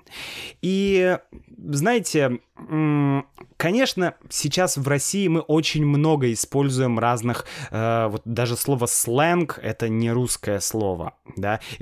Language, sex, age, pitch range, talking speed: Russian, male, 20-39, 120-160 Hz, 110 wpm